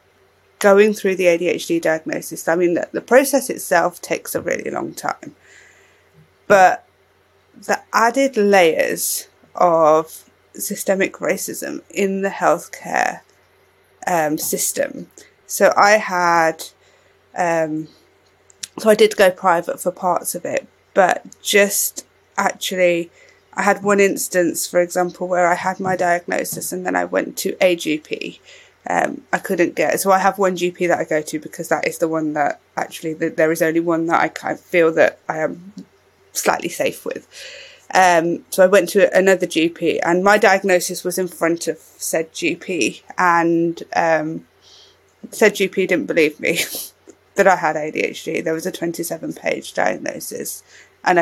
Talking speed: 150 wpm